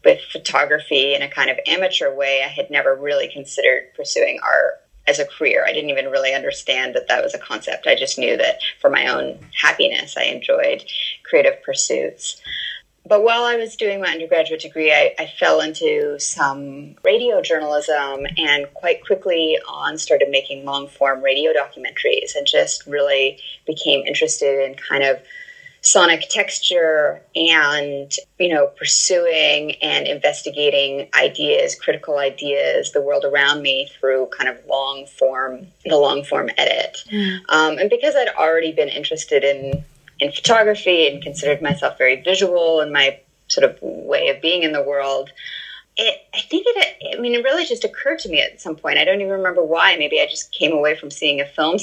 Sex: female